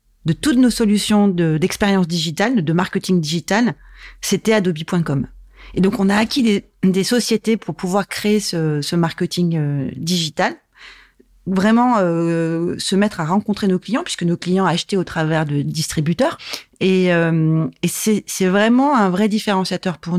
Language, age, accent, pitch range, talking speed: French, 30-49, French, 165-200 Hz, 160 wpm